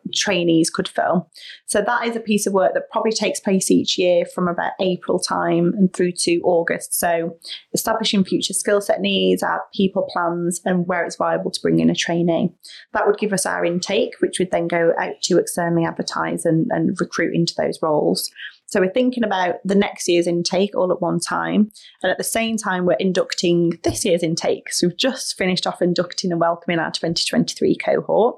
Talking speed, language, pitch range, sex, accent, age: 200 wpm, English, 170-205 Hz, female, British, 30-49